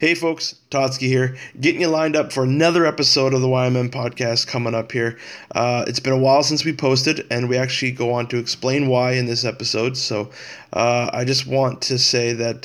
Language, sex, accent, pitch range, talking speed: English, male, American, 120-140 Hz, 215 wpm